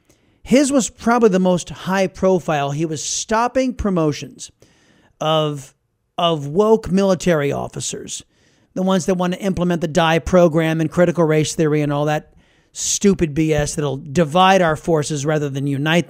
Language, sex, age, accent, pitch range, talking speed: English, male, 40-59, American, 155-200 Hz, 155 wpm